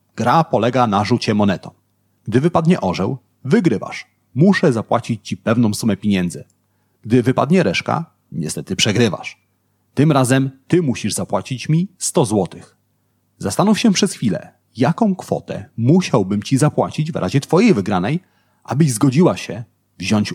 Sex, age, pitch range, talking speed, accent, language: male, 40-59, 105-160 Hz, 135 wpm, native, Polish